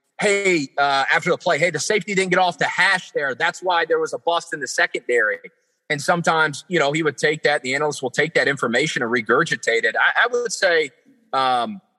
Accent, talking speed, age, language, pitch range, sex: American, 225 wpm, 30-49, English, 125-170 Hz, male